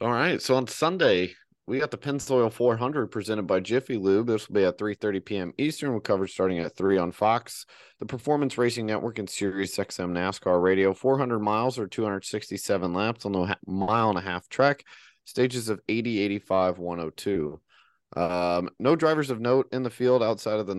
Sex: male